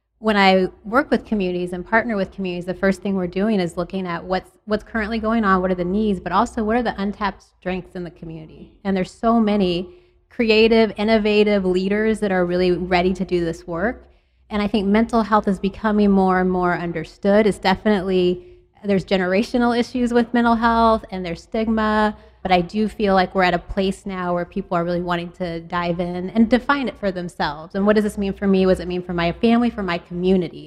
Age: 20-39